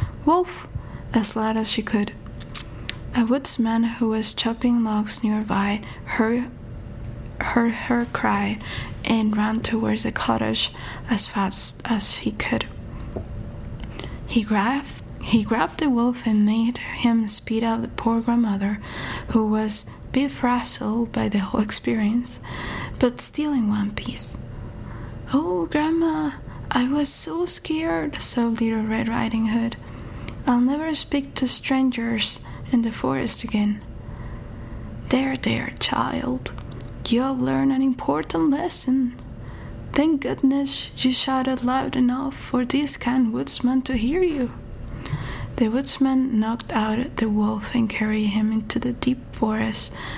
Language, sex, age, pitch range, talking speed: English, female, 20-39, 195-245 Hz, 130 wpm